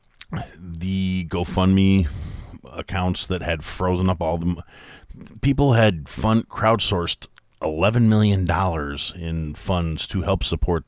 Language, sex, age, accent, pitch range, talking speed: English, male, 40-59, American, 75-95 Hz, 115 wpm